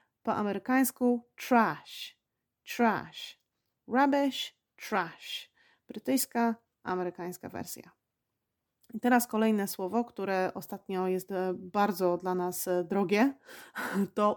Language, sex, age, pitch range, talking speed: Polish, female, 30-49, 185-245 Hz, 90 wpm